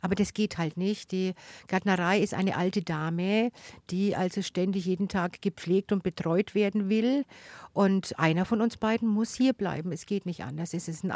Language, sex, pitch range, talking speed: German, female, 175-205 Hz, 195 wpm